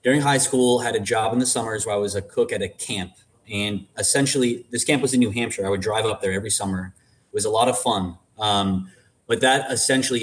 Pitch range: 100-125 Hz